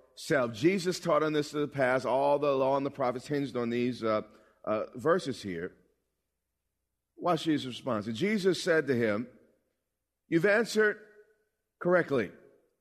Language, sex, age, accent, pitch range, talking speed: English, male, 40-59, American, 135-180 Hz, 145 wpm